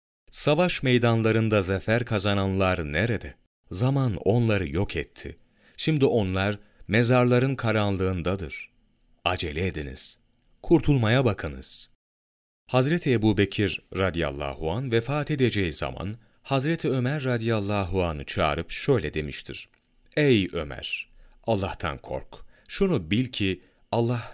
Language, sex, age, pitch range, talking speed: Turkish, male, 40-59, 90-120 Hz, 95 wpm